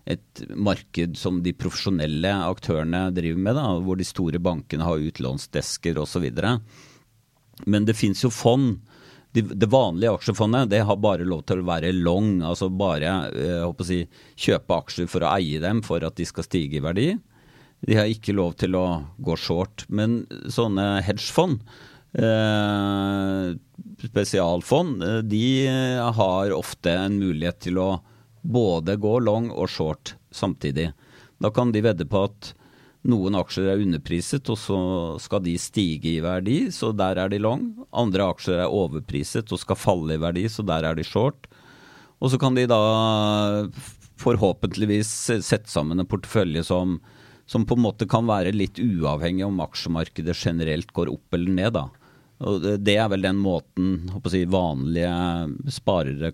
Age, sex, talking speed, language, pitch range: 40-59, male, 160 wpm, English, 85-115 Hz